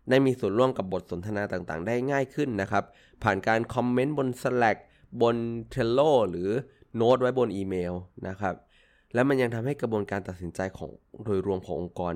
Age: 20-39